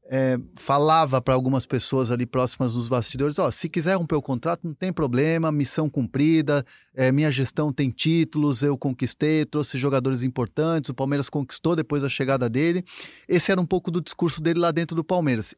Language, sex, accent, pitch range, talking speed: Portuguese, male, Brazilian, 135-160 Hz, 190 wpm